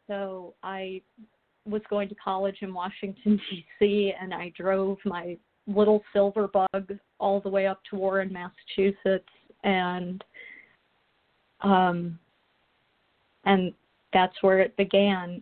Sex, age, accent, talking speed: female, 40-59, American, 115 wpm